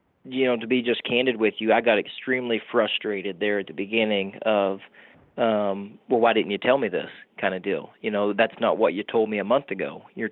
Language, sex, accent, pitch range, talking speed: English, male, American, 105-125 Hz, 235 wpm